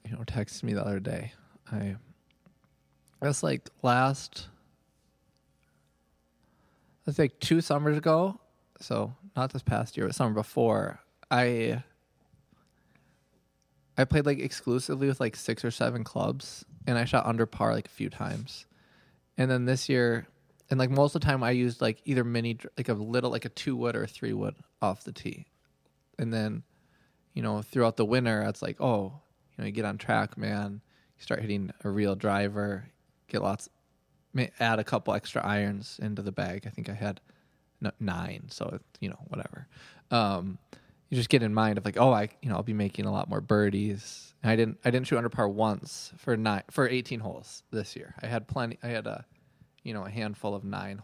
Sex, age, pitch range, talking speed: male, 20-39, 105-130 Hz, 190 wpm